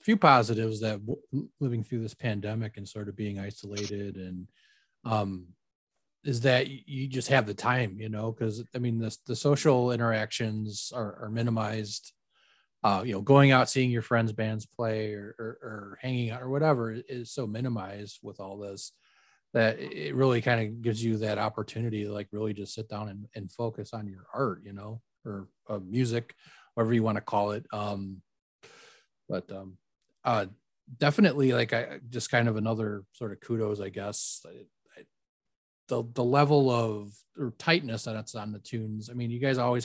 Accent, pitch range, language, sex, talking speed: American, 105-120 Hz, English, male, 185 wpm